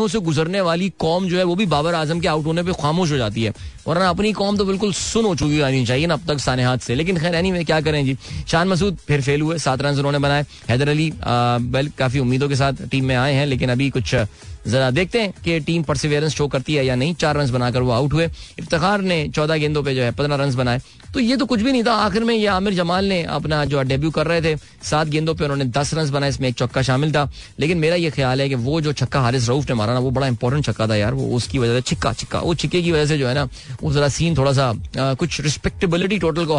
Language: Hindi